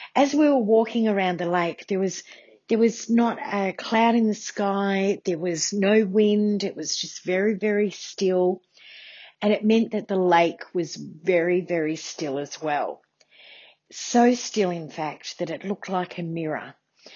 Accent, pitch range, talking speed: Australian, 165-215 Hz, 170 wpm